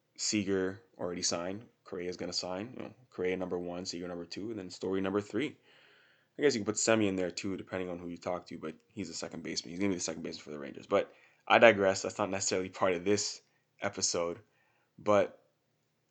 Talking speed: 230 wpm